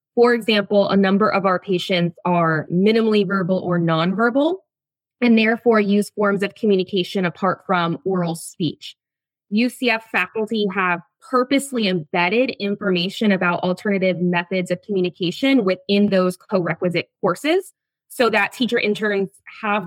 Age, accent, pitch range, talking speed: 20-39, American, 180-220 Hz, 130 wpm